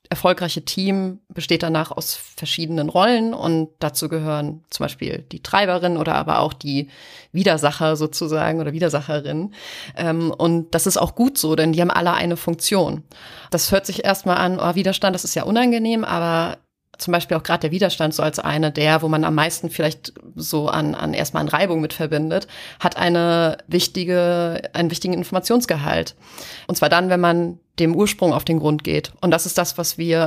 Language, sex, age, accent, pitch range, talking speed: German, female, 30-49, German, 160-180 Hz, 180 wpm